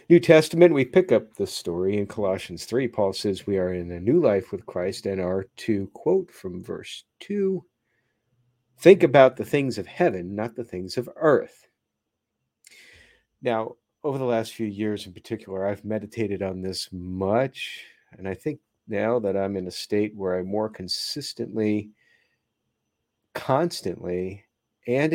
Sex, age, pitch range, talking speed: male, 50-69, 100-125 Hz, 155 wpm